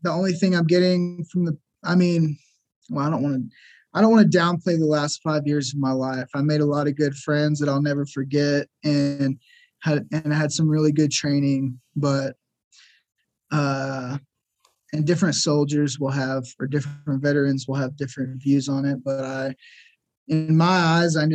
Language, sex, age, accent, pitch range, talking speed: English, male, 20-39, American, 135-155 Hz, 190 wpm